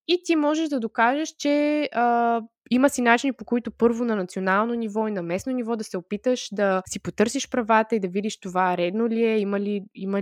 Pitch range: 195-265 Hz